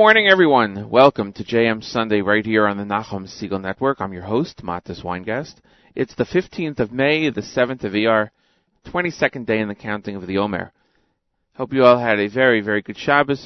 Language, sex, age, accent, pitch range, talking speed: English, male, 40-59, American, 105-135 Hz, 200 wpm